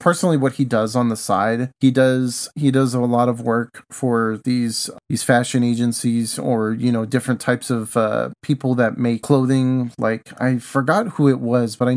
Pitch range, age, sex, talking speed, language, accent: 115-140 Hz, 30-49, male, 195 wpm, English, American